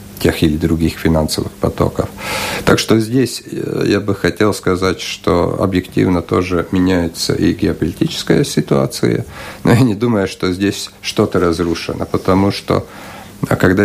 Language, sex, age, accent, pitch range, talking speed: Russian, male, 50-69, native, 90-110 Hz, 130 wpm